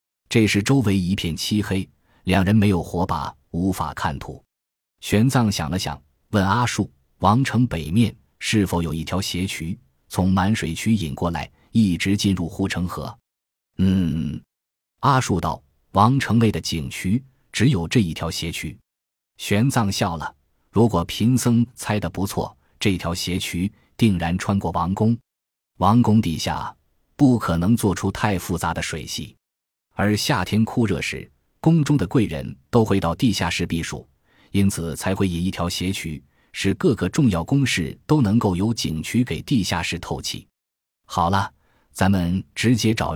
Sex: male